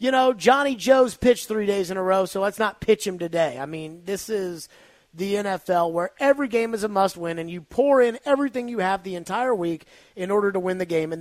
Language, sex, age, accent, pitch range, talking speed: English, male, 30-49, American, 160-210 Hz, 240 wpm